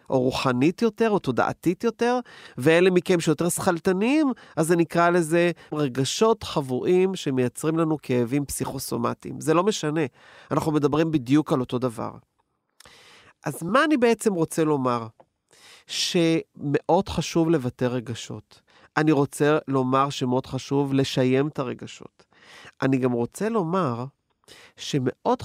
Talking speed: 125 wpm